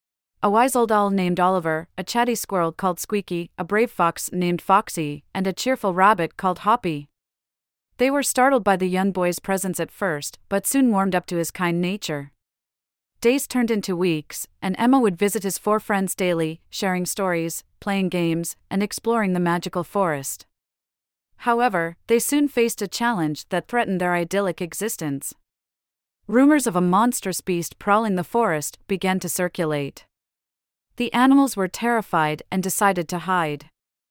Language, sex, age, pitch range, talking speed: English, female, 30-49, 160-215 Hz, 160 wpm